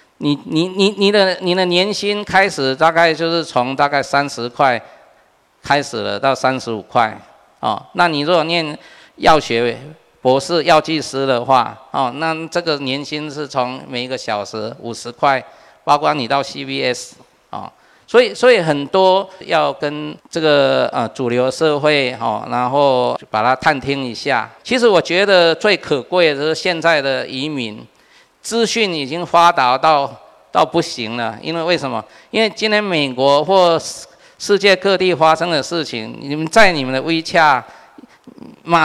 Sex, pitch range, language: male, 135-180 Hz, Chinese